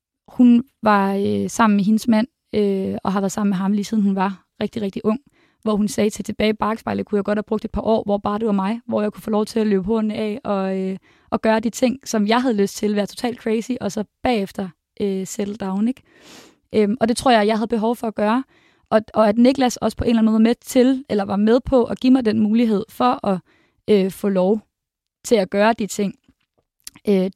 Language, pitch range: Danish, 200-230 Hz